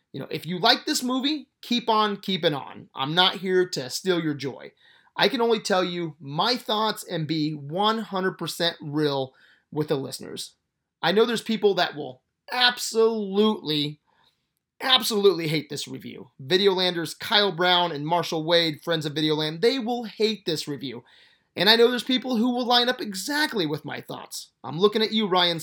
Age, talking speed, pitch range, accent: 30-49, 175 wpm, 150-215 Hz, American